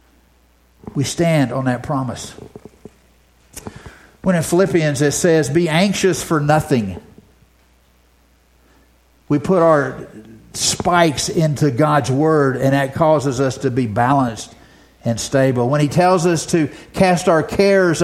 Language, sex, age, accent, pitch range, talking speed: English, male, 50-69, American, 105-160 Hz, 125 wpm